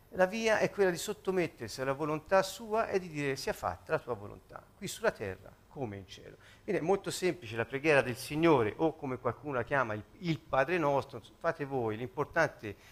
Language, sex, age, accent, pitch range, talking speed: Italian, male, 50-69, native, 120-185 Hz, 195 wpm